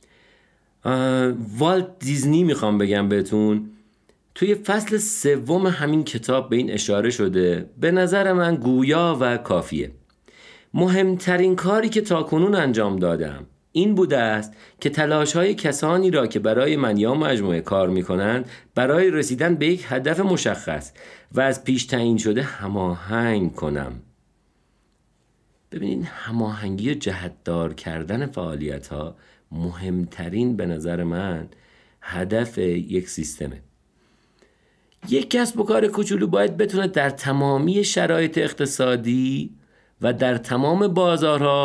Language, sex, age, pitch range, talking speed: Persian, male, 50-69, 95-160 Hz, 120 wpm